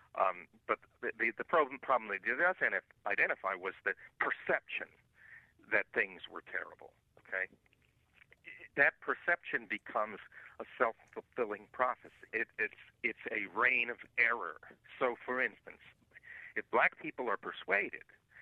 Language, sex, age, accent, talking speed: English, male, 60-79, American, 125 wpm